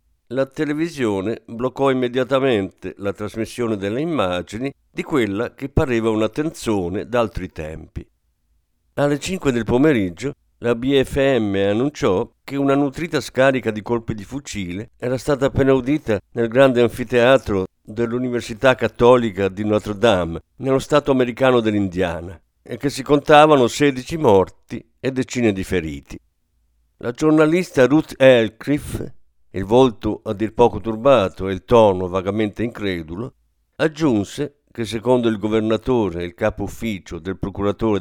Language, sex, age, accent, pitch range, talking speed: Italian, male, 50-69, native, 95-135 Hz, 130 wpm